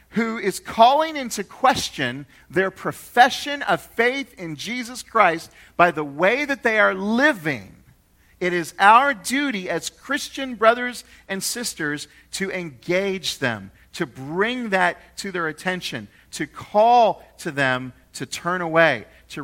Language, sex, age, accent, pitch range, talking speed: English, male, 40-59, American, 130-190 Hz, 140 wpm